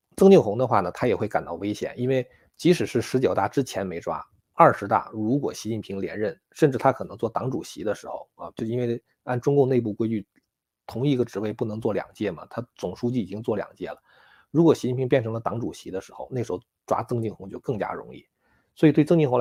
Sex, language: male, Chinese